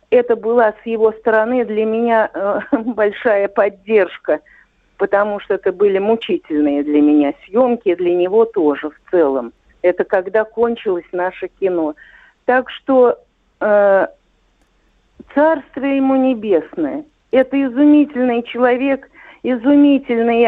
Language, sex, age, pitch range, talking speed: Russian, female, 50-69, 215-260 Hz, 110 wpm